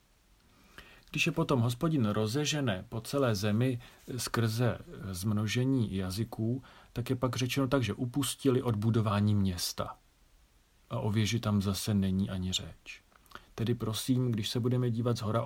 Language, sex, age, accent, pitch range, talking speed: Czech, male, 40-59, native, 100-130 Hz, 140 wpm